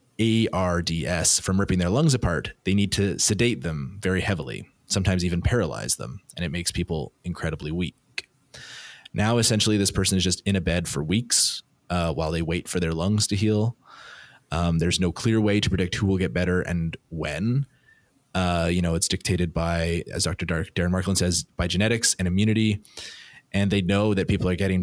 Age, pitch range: 20-39, 90-100 Hz